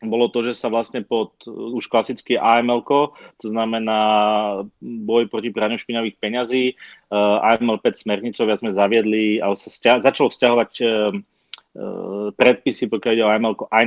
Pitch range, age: 105-125 Hz, 30-49